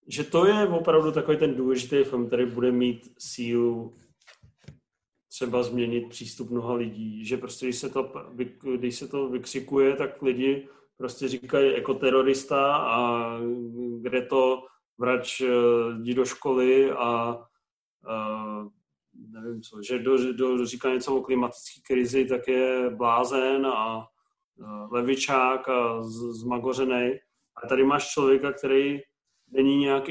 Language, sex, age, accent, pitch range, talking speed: Czech, male, 30-49, native, 125-140 Hz, 130 wpm